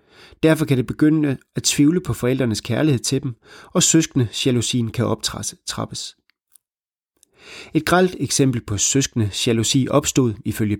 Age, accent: 30-49, native